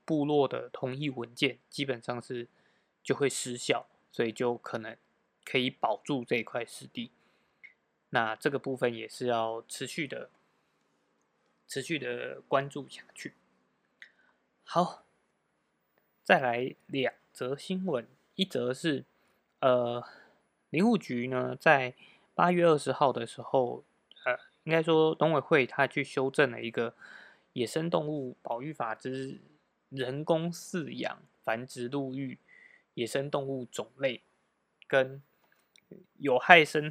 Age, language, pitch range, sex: 20-39, Chinese, 120-160 Hz, male